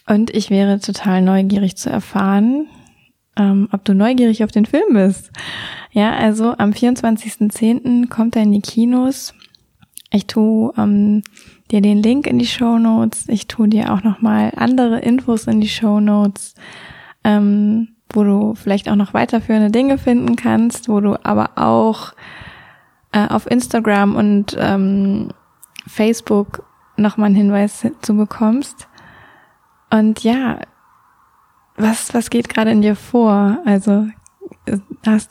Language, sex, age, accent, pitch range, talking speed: German, female, 20-39, German, 205-225 Hz, 140 wpm